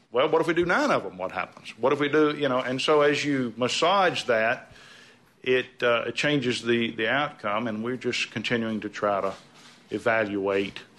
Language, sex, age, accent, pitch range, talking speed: English, male, 50-69, American, 115-140 Hz, 200 wpm